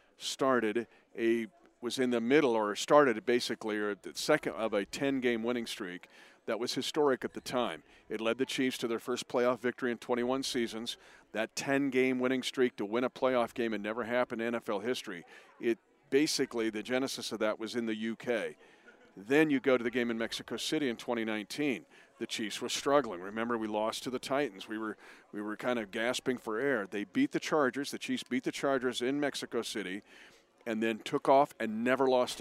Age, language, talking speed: 50-69, English, 205 wpm